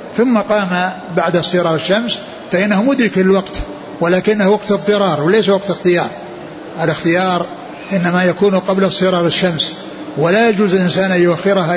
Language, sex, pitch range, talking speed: Arabic, male, 170-200 Hz, 120 wpm